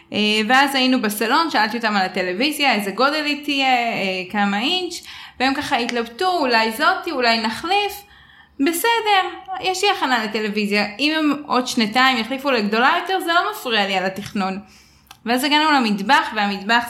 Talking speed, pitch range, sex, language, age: 155 wpm, 200-280 Hz, female, Hebrew, 10-29